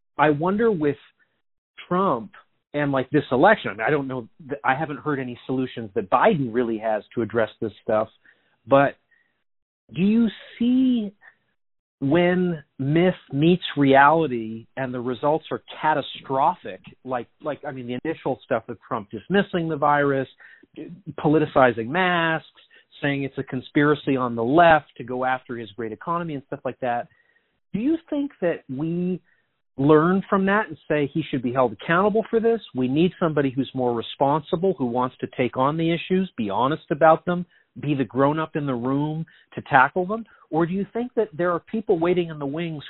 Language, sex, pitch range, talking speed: English, male, 135-180 Hz, 175 wpm